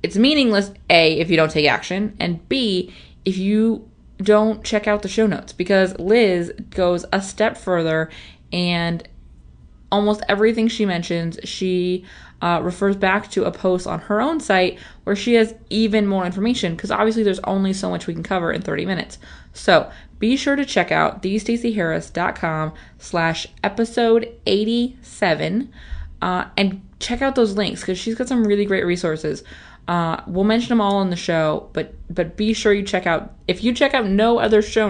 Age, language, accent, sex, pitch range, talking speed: 20-39, English, American, female, 170-220 Hz, 175 wpm